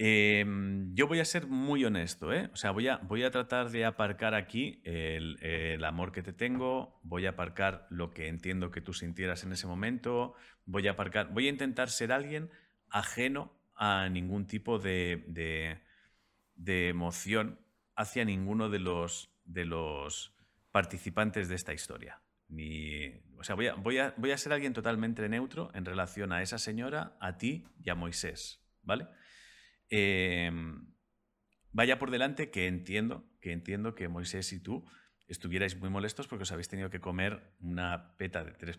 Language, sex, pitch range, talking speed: Spanish, male, 90-110 Hz, 170 wpm